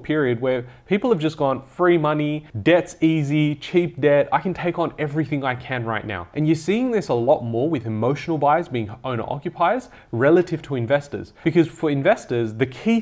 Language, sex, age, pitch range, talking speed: English, male, 30-49, 120-160 Hz, 195 wpm